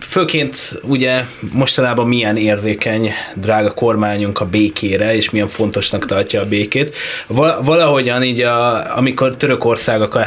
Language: Hungarian